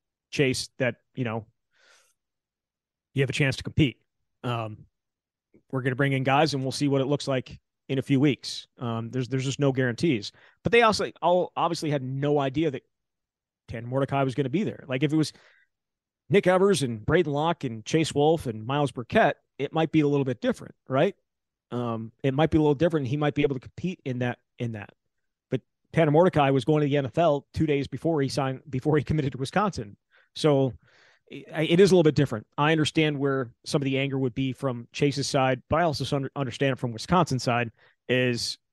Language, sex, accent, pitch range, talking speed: English, male, American, 130-150 Hz, 210 wpm